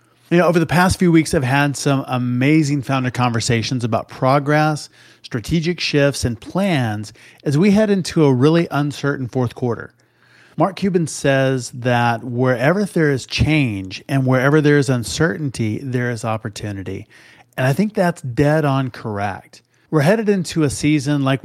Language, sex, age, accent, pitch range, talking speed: English, male, 30-49, American, 120-155 Hz, 160 wpm